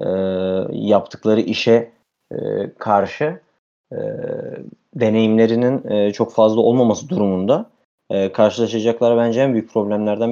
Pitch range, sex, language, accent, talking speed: 105-130 Hz, male, Turkish, native, 105 wpm